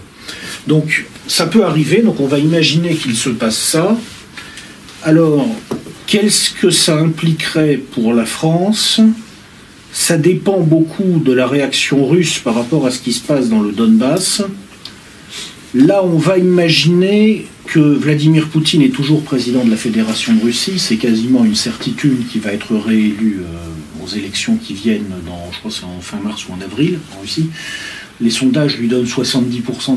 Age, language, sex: 50-69, French, male